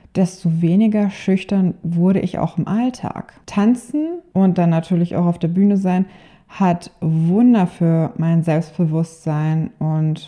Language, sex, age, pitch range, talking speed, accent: German, female, 20-39, 165-190 Hz, 135 wpm, German